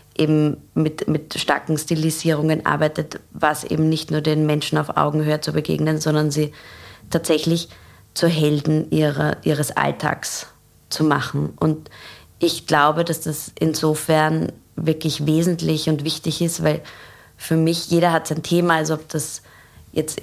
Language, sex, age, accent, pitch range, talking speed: German, female, 20-39, German, 150-165 Hz, 140 wpm